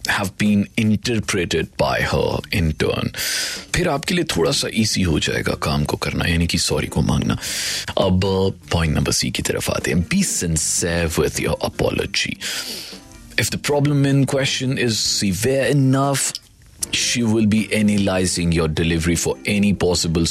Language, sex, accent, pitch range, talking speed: Hindi, male, native, 95-135 Hz, 155 wpm